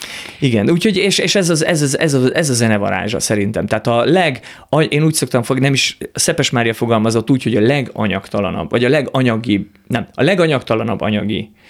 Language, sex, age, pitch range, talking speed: Hungarian, male, 30-49, 110-130 Hz, 195 wpm